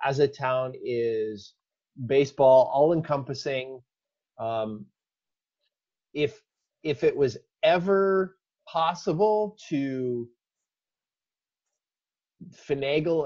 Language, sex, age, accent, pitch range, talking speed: English, male, 30-49, American, 120-145 Hz, 65 wpm